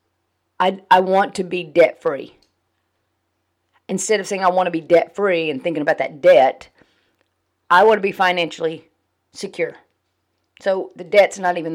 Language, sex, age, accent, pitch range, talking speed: English, female, 40-59, American, 160-205 Hz, 155 wpm